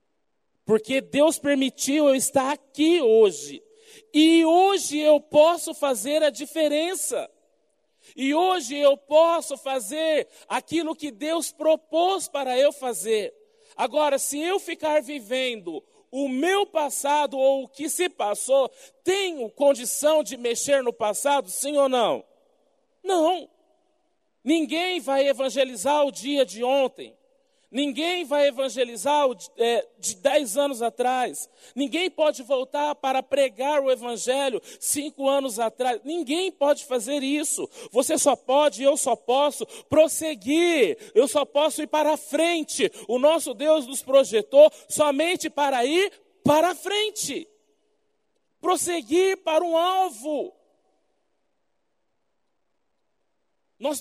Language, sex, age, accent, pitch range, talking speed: Portuguese, male, 40-59, Brazilian, 270-335 Hz, 120 wpm